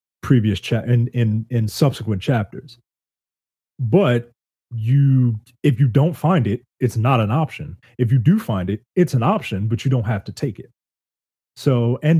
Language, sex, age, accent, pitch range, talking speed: English, male, 30-49, American, 105-135 Hz, 175 wpm